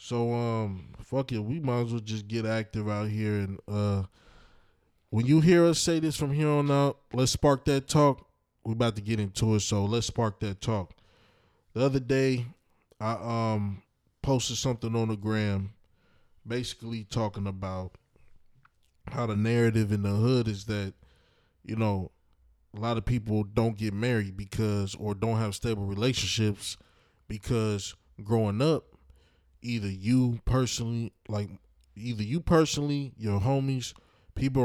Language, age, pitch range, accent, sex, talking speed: English, 20-39, 100-120 Hz, American, male, 155 wpm